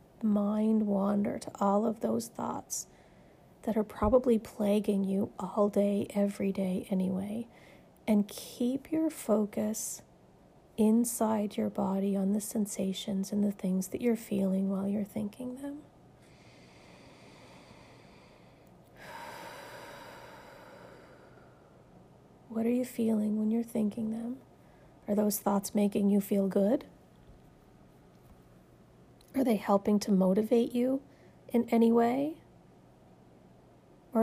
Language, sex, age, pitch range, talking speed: English, female, 40-59, 195-235 Hz, 110 wpm